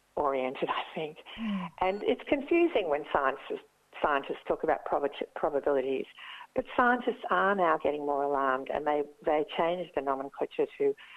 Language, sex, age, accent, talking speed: English, female, 60-79, Australian, 140 wpm